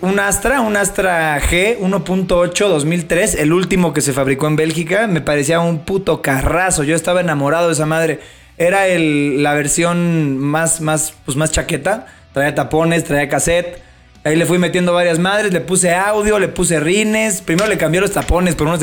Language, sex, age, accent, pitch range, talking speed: Spanish, male, 20-39, Mexican, 155-190 Hz, 185 wpm